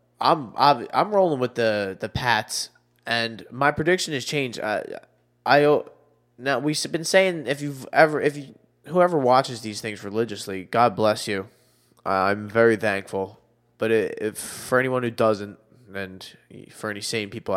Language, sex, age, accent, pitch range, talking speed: English, male, 20-39, American, 95-120 Hz, 160 wpm